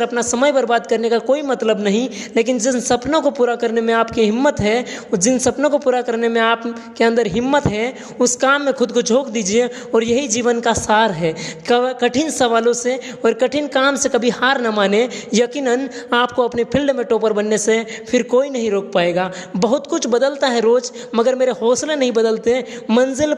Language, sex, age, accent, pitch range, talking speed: Hindi, female, 20-39, native, 230-265 Hz, 200 wpm